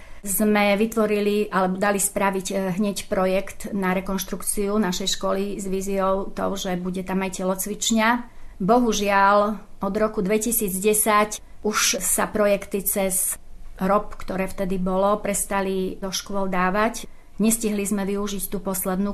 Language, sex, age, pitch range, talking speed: Slovak, female, 30-49, 180-200 Hz, 130 wpm